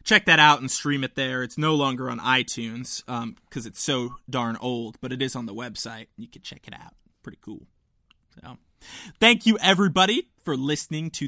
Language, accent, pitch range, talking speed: English, American, 130-180 Hz, 200 wpm